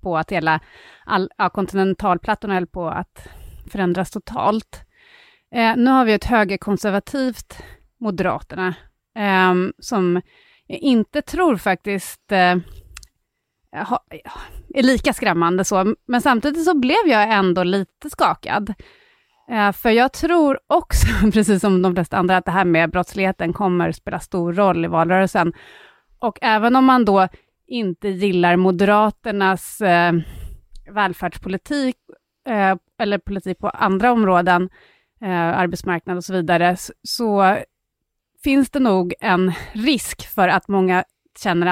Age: 30-49